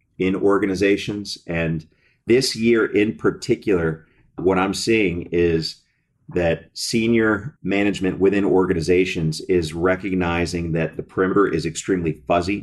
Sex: male